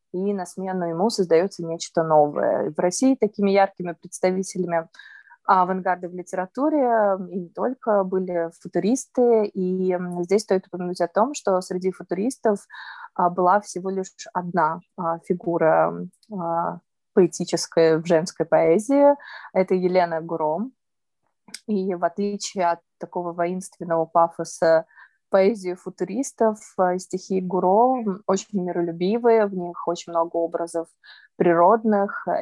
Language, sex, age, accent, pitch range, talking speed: Russian, female, 20-39, native, 170-200 Hz, 110 wpm